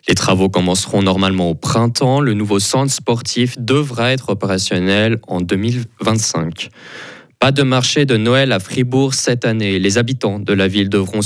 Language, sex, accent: French, male, French